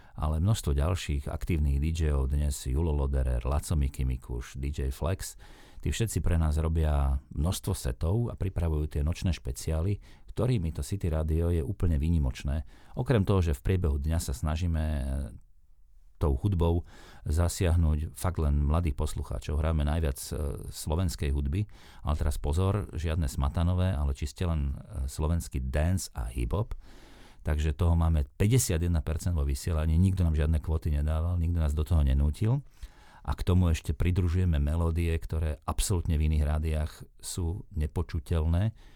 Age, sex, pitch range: 40-59, male, 70-90 Hz